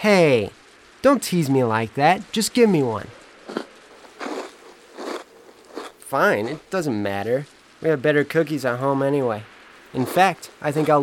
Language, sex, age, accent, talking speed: English, male, 30-49, American, 140 wpm